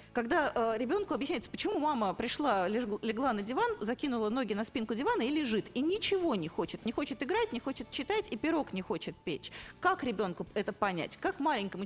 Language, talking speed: Russian, 185 wpm